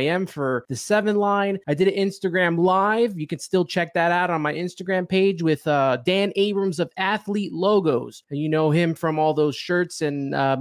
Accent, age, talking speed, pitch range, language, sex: American, 20-39, 210 wpm, 150-185 Hz, English, male